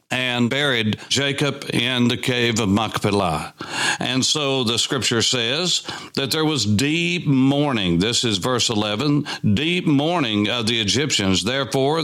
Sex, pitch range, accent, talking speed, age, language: male, 110-135 Hz, American, 140 wpm, 60-79, English